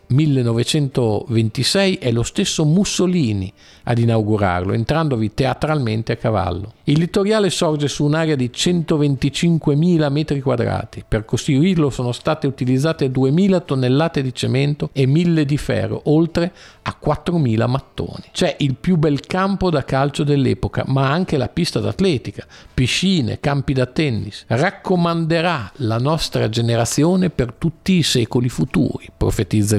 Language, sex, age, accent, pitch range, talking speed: Italian, male, 50-69, native, 115-160 Hz, 130 wpm